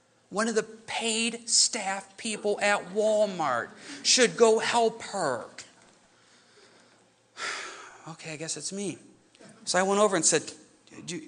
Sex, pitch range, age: male, 185-280 Hz, 40-59